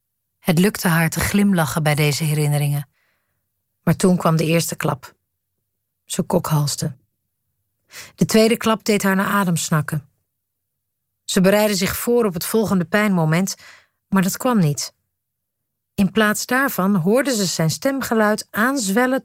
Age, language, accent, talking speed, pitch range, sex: 40-59, Dutch, Dutch, 135 wpm, 145-195 Hz, female